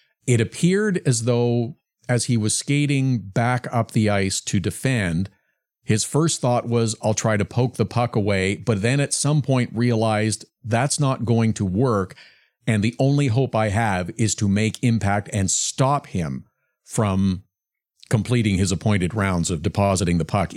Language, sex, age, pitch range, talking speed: English, male, 50-69, 100-130 Hz, 170 wpm